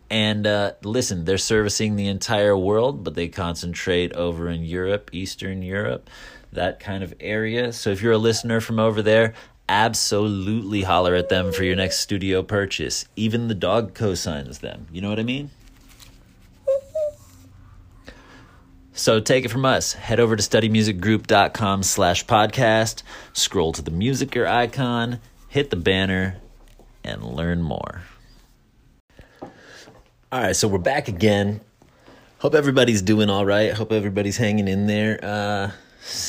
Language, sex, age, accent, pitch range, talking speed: English, male, 30-49, American, 95-125 Hz, 140 wpm